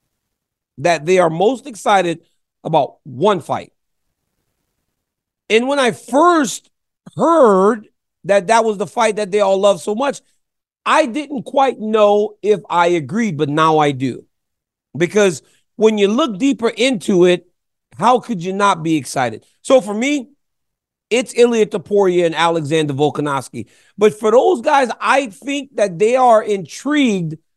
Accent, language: American, English